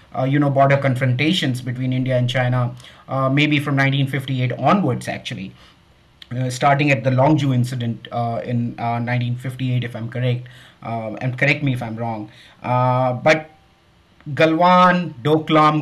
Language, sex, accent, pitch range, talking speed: English, male, Indian, 125-160 Hz, 150 wpm